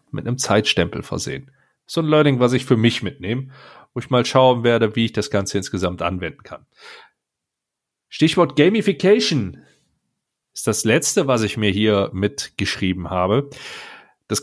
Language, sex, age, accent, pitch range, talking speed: German, male, 40-59, German, 95-135 Hz, 150 wpm